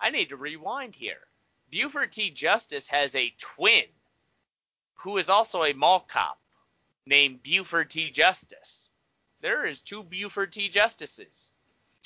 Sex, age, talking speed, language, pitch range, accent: male, 30-49, 135 wpm, English, 140-190 Hz, American